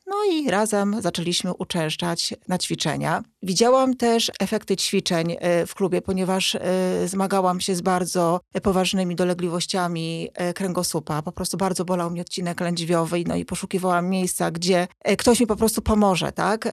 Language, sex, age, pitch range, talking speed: Polish, female, 40-59, 180-215 Hz, 140 wpm